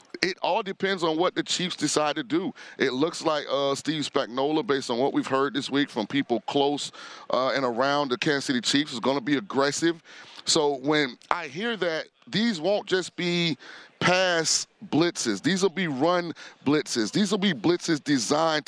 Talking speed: 190 wpm